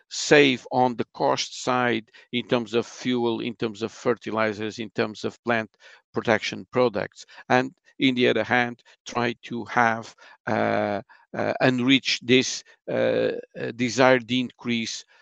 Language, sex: English, male